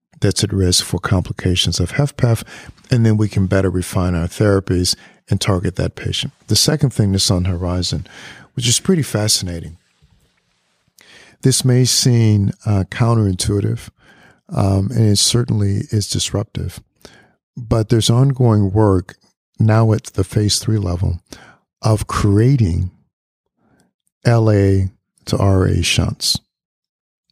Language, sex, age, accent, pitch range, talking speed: English, male, 50-69, American, 95-120 Hz, 125 wpm